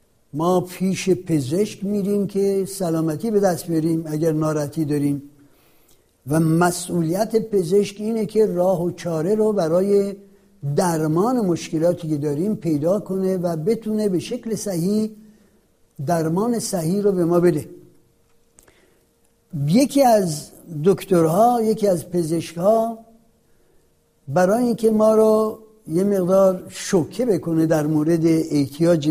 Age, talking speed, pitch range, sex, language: 60-79, 115 wpm, 155-205 Hz, male, Persian